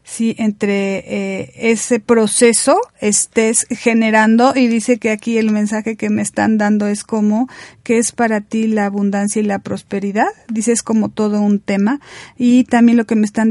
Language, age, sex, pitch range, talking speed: Spanish, 40-59, female, 205-230 Hz, 180 wpm